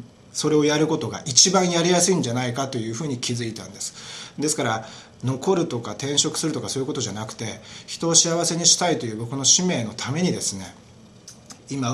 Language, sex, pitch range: Japanese, male, 110-145 Hz